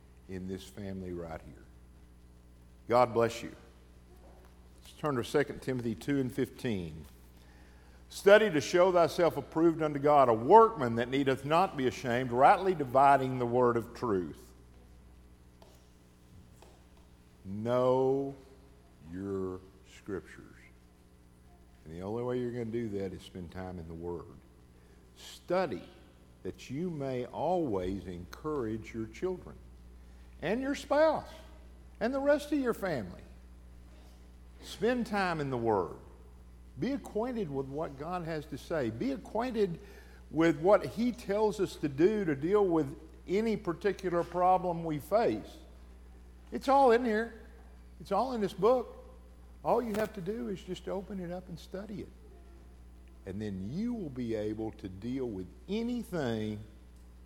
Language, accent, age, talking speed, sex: English, American, 50-69, 140 wpm, male